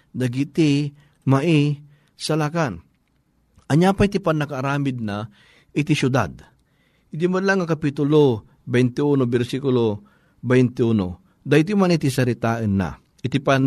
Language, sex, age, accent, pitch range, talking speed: Filipino, male, 50-69, native, 135-170 Hz, 95 wpm